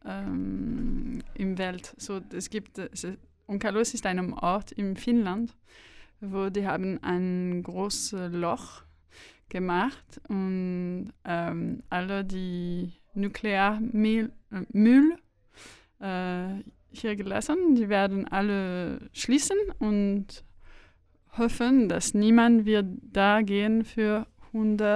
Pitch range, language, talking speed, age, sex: 180-225 Hz, German, 95 wpm, 20-39, female